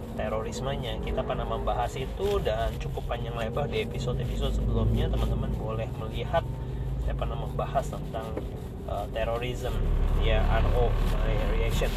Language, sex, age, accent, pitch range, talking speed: Indonesian, male, 30-49, native, 105-135 Hz, 120 wpm